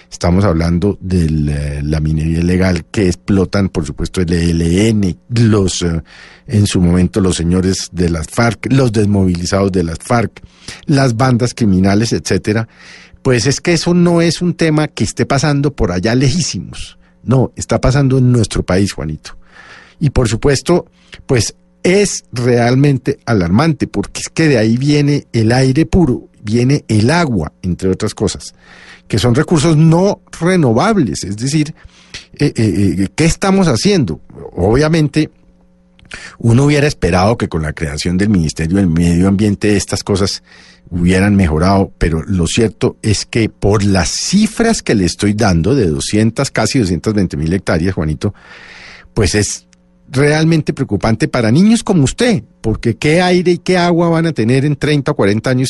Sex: male